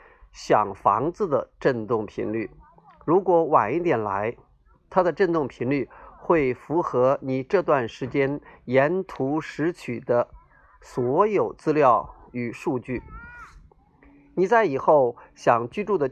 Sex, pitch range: male, 120-175 Hz